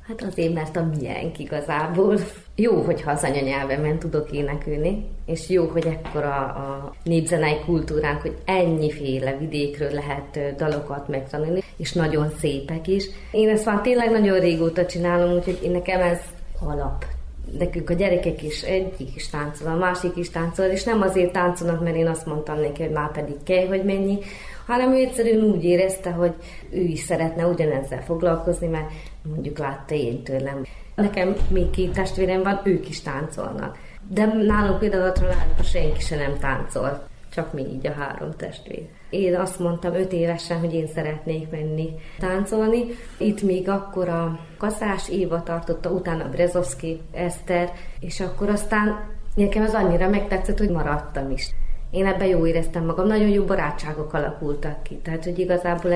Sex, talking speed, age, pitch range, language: female, 160 wpm, 30-49, 155-185 Hz, Hungarian